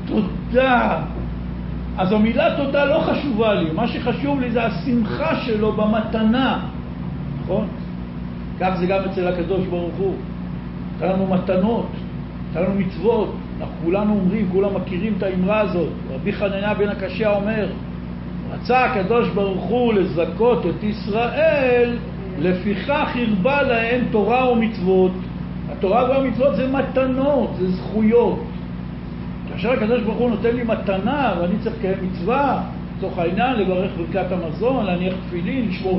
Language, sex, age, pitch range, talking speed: Hebrew, male, 60-79, 180-235 Hz, 130 wpm